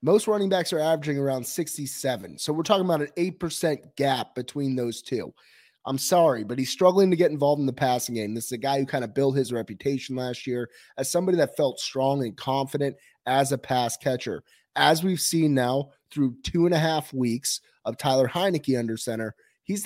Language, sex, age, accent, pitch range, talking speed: English, male, 30-49, American, 125-160 Hz, 205 wpm